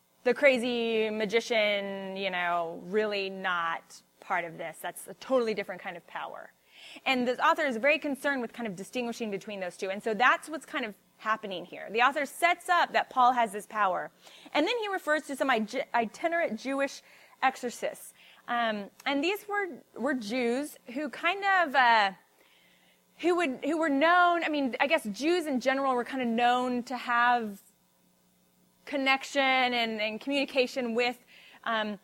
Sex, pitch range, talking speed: female, 205-275 Hz, 170 wpm